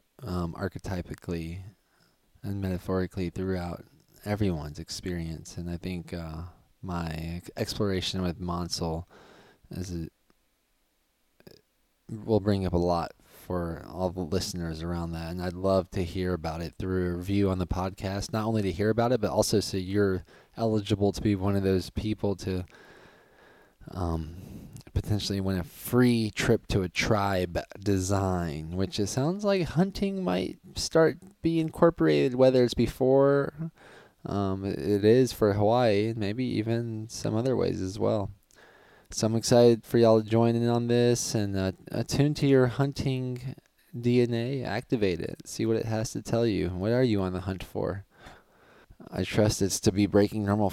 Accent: American